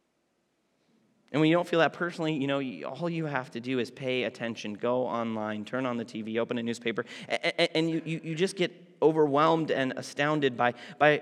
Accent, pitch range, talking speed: American, 130-170 Hz, 200 wpm